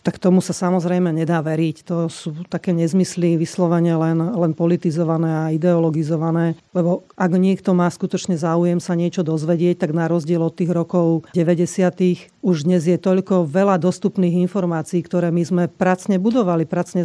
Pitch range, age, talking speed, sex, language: 175-190 Hz, 40-59, 160 wpm, female, Slovak